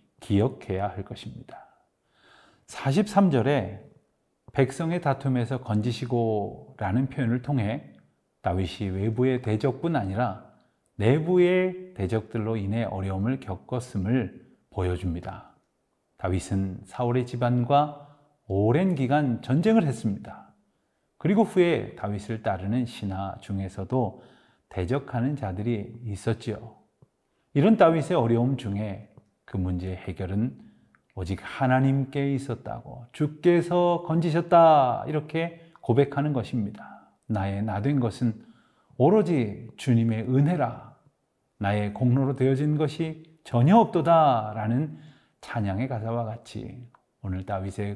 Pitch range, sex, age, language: 105-140 Hz, male, 30-49, Korean